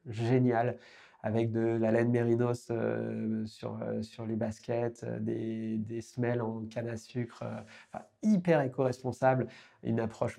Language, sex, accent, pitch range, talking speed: French, male, French, 110-125 Hz, 150 wpm